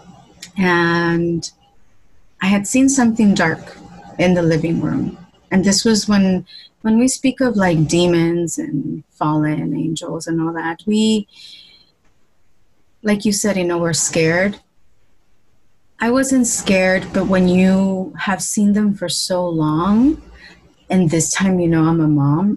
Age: 30-49